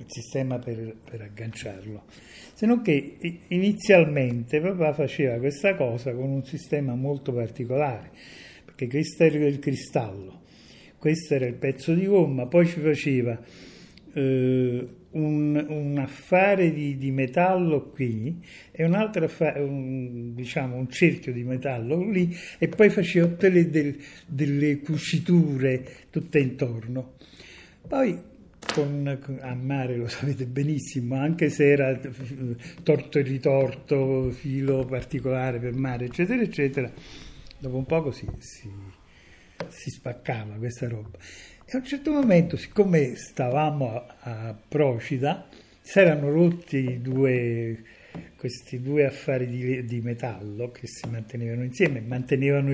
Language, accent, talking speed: Italian, native, 125 wpm